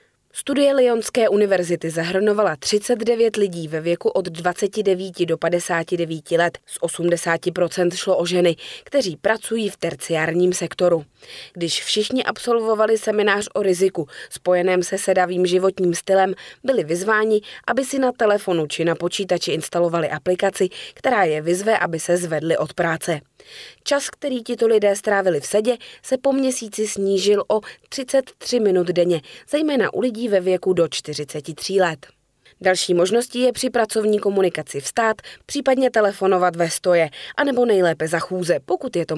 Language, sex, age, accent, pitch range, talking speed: Czech, female, 20-39, native, 170-225 Hz, 145 wpm